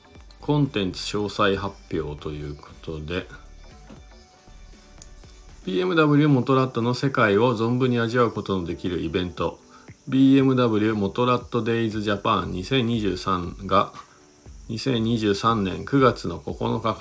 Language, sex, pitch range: Japanese, male, 85-120 Hz